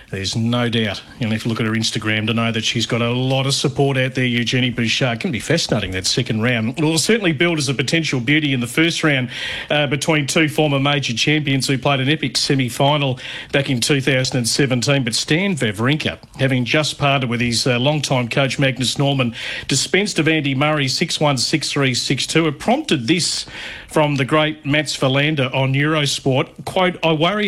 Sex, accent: male, Australian